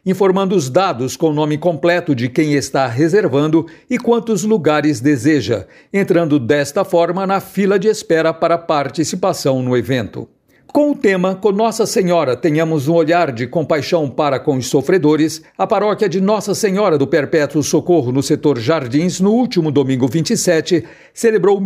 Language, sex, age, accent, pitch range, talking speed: Portuguese, male, 60-79, Brazilian, 145-190 Hz, 160 wpm